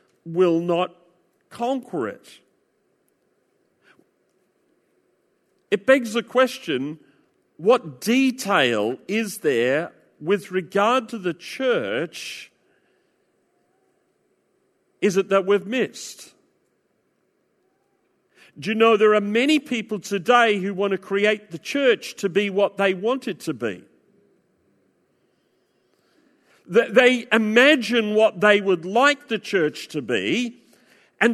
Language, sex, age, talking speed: English, male, 50-69, 105 wpm